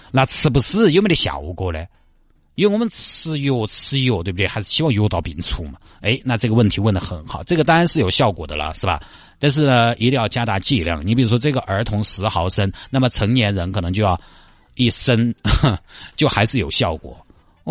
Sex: male